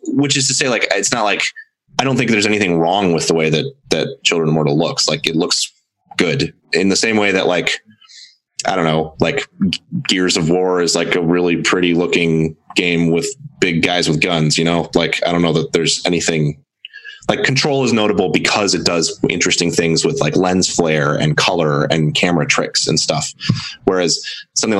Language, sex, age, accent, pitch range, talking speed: English, male, 20-39, American, 80-115 Hz, 200 wpm